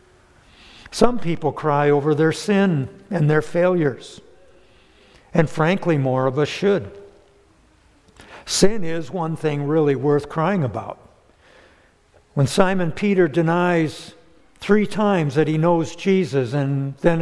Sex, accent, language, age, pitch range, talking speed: male, American, English, 60-79, 145-185 Hz, 120 wpm